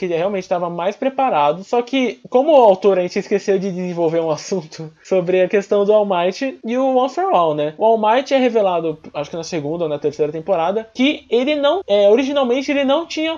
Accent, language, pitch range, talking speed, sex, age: Brazilian, Portuguese, 180-260 Hz, 230 wpm, male, 20-39